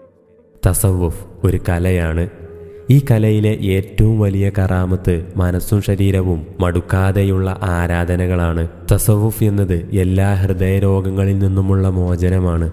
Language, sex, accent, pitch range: Malayalam, male, native, 90-100 Hz